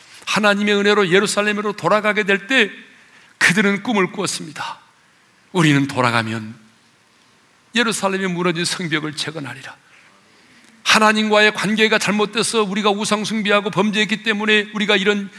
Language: Korean